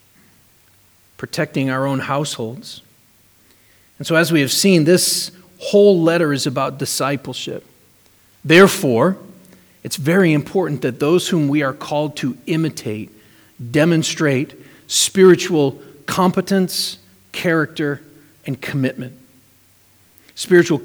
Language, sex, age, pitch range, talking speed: English, male, 40-59, 130-180 Hz, 100 wpm